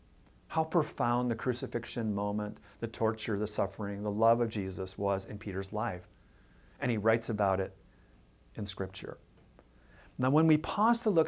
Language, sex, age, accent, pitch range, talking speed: English, male, 50-69, American, 105-165 Hz, 160 wpm